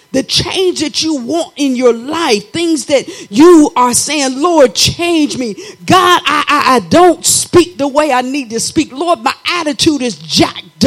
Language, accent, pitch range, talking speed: English, American, 225-330 Hz, 180 wpm